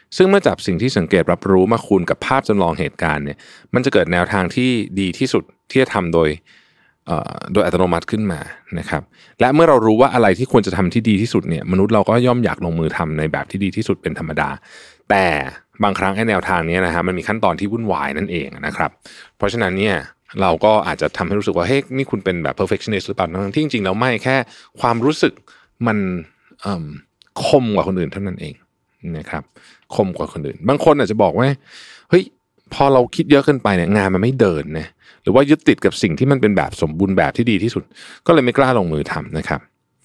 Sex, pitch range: male, 90-130 Hz